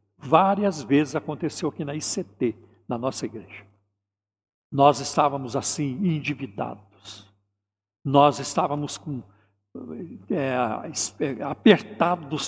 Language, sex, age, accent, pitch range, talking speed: Portuguese, male, 60-79, Brazilian, 105-165 Hz, 75 wpm